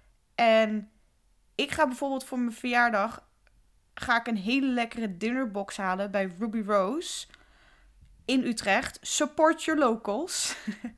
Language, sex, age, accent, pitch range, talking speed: Dutch, female, 20-39, Dutch, 200-265 Hz, 120 wpm